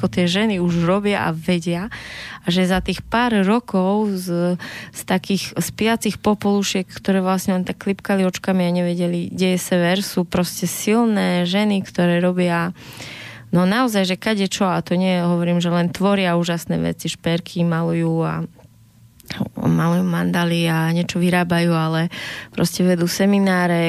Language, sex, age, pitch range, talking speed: Slovak, female, 20-39, 170-195 Hz, 155 wpm